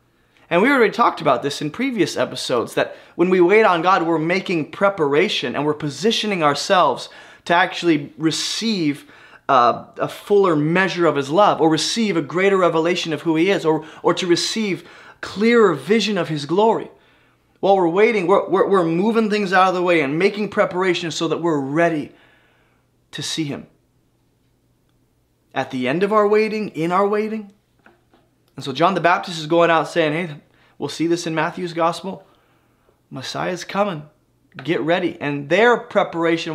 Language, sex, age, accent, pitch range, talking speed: English, male, 20-39, American, 150-185 Hz, 170 wpm